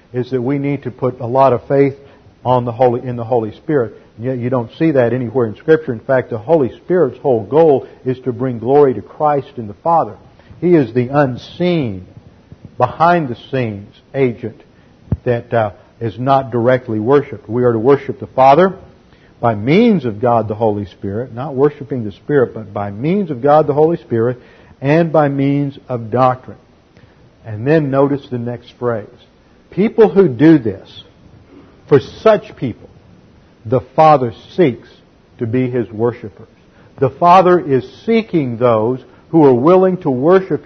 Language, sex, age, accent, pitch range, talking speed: English, male, 50-69, American, 115-145 Hz, 170 wpm